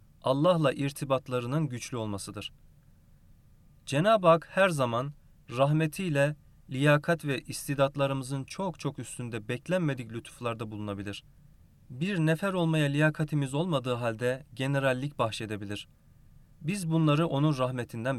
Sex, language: male, Turkish